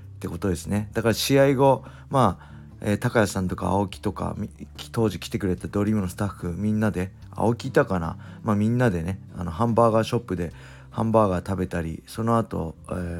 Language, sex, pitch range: Japanese, male, 90-115 Hz